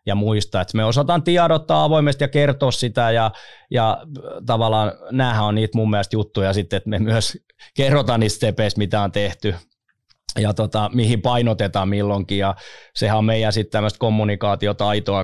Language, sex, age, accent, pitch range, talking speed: English, male, 20-39, Finnish, 105-120 Hz, 155 wpm